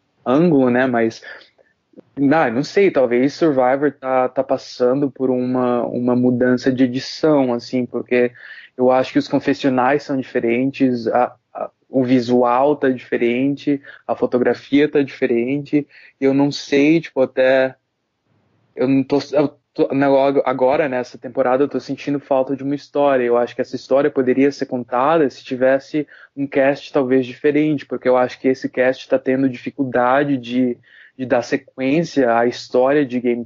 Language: Portuguese